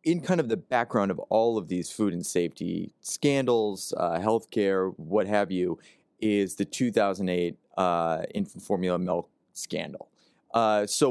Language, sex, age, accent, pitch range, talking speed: English, male, 30-49, American, 95-120 Hz, 155 wpm